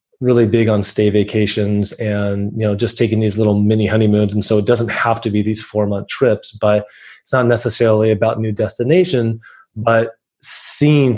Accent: American